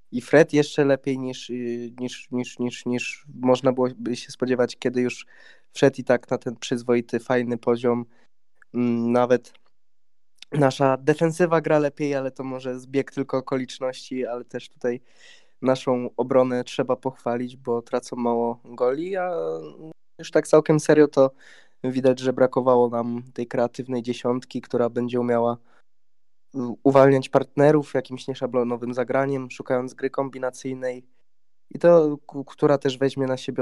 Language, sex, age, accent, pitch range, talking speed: Polish, male, 20-39, native, 120-135 Hz, 135 wpm